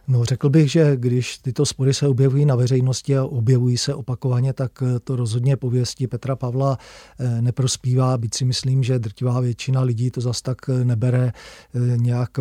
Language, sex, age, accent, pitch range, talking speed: Czech, male, 40-59, native, 120-130 Hz, 165 wpm